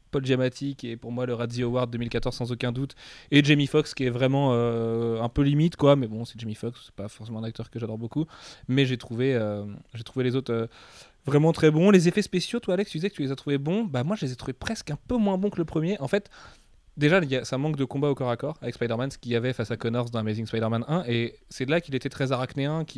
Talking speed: 295 wpm